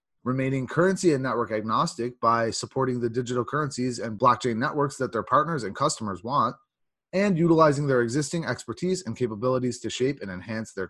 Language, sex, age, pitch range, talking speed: English, male, 30-49, 110-145 Hz, 170 wpm